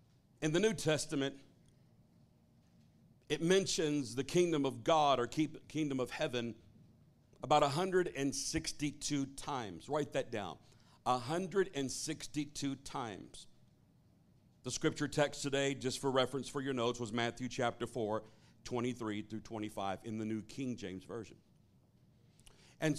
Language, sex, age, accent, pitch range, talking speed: English, male, 50-69, American, 120-160 Hz, 120 wpm